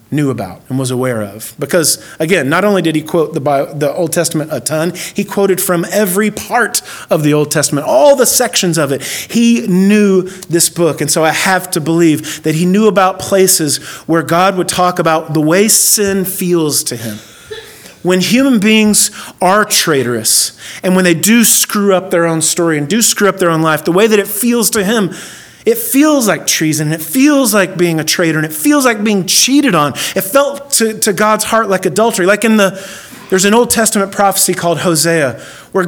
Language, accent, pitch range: English, American, 165-230 Hz